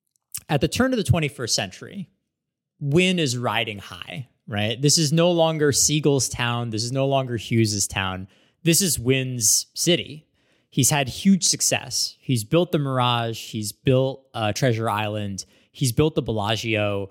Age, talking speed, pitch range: 20-39, 160 wpm, 115-155 Hz